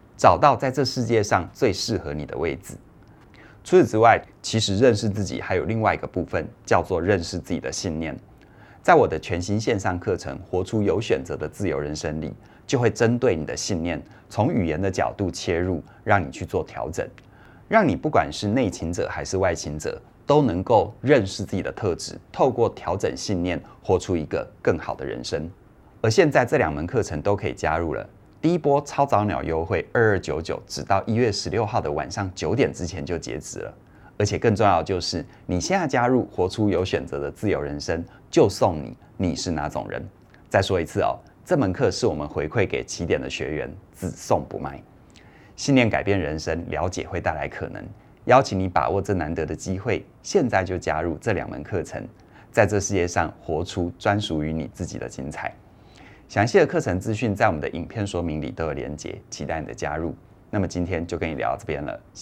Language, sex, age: Chinese, male, 30-49